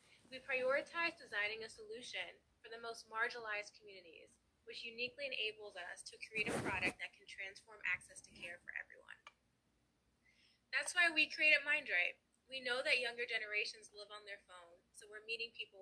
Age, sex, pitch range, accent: 20-39, female, 200-285 Hz, American